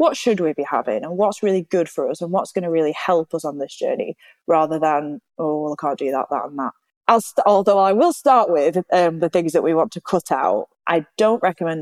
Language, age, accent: English, 20-39, British